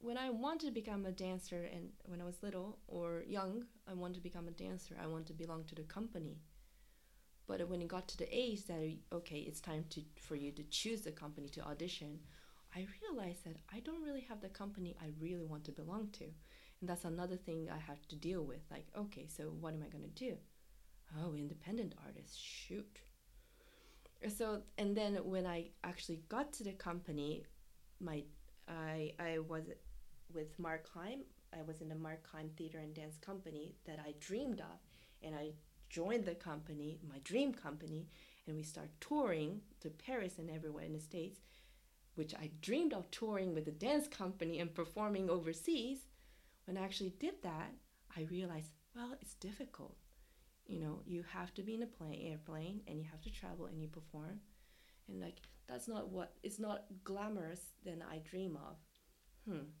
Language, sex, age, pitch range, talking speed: English, female, 20-39, 155-200 Hz, 190 wpm